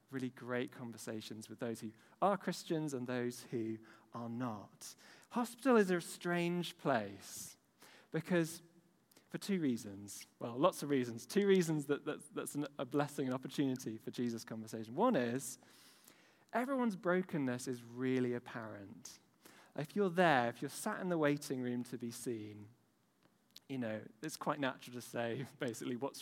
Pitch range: 120-155 Hz